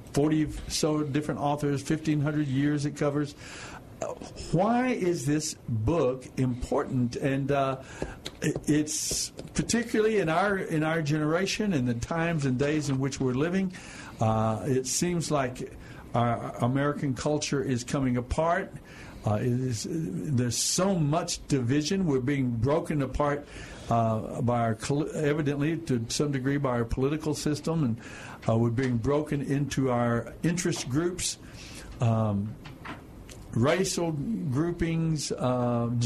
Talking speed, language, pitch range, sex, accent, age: 130 wpm, English, 125-155 Hz, male, American, 60-79